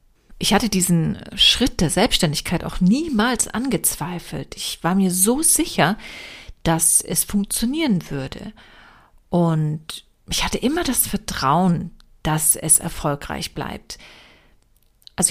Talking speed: 115 wpm